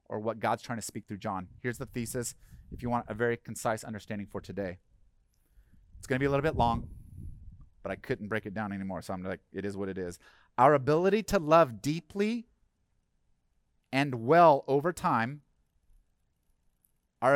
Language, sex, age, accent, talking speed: English, male, 30-49, American, 180 wpm